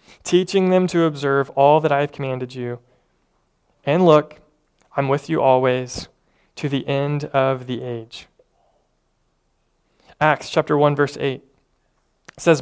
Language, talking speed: English, 135 wpm